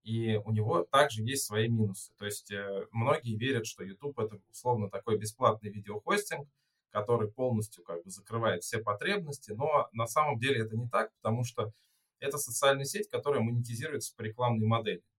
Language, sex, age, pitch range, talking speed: Russian, male, 20-39, 105-125 Hz, 165 wpm